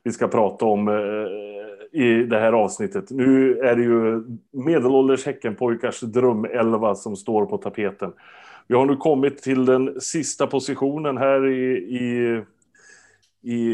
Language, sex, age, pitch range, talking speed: Swedish, male, 30-49, 115-140 Hz, 135 wpm